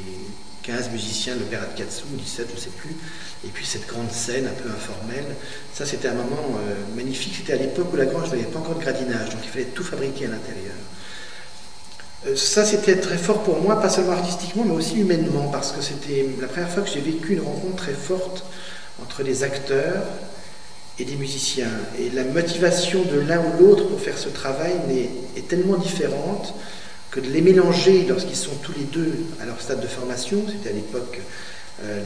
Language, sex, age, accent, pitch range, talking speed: French, male, 40-59, French, 110-175 Hz, 200 wpm